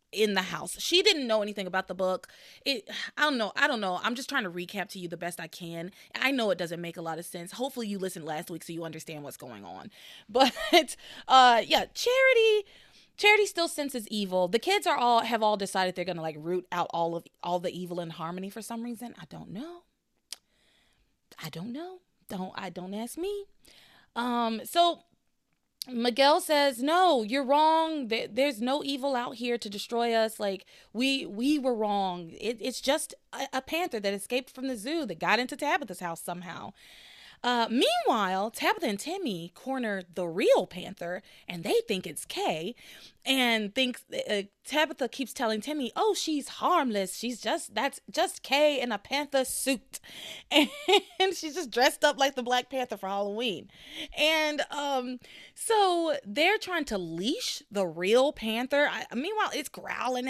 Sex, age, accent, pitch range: female, 20-39, American, 190-290 Hz